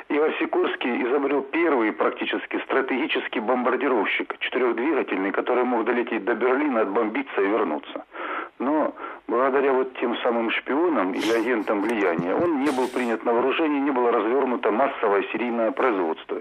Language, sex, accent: Russian, male, native